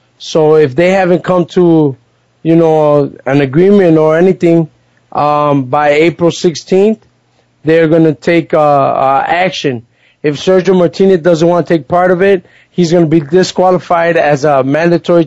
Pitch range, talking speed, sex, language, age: 145-175 Hz, 160 wpm, male, English, 20-39